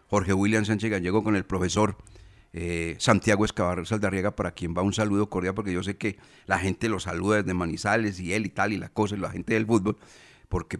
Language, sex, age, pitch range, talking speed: Spanish, male, 40-59, 95-125 Hz, 220 wpm